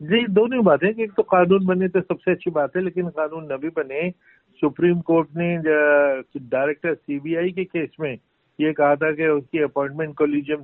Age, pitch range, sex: 50-69, 145-170 Hz, male